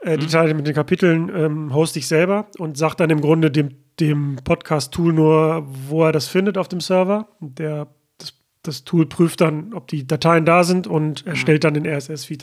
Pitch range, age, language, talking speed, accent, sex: 155-175 Hz, 40-59, German, 200 wpm, German, male